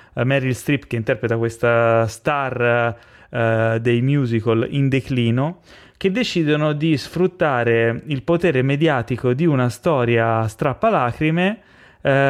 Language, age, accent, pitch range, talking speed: Italian, 30-49, native, 115-145 Hz, 115 wpm